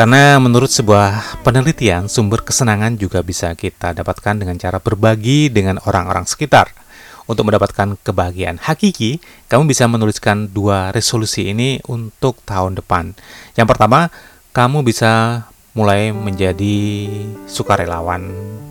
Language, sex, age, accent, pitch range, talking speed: Indonesian, male, 30-49, native, 100-130 Hz, 115 wpm